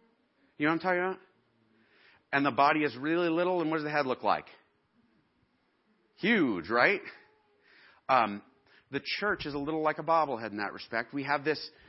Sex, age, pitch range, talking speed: male, 40-59, 120-165 Hz, 180 wpm